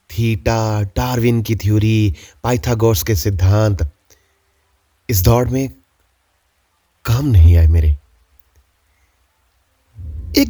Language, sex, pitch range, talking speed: Hindi, male, 80-115 Hz, 85 wpm